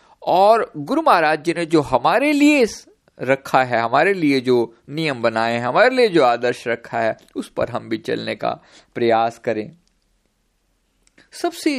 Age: 50-69